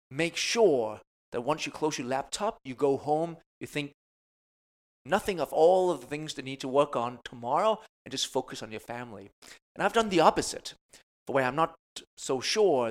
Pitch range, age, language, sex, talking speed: 120-160 Hz, 30-49, English, male, 195 wpm